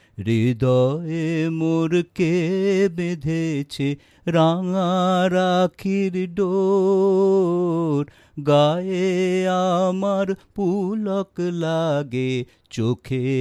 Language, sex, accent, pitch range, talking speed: English, male, Indian, 130-185 Hz, 55 wpm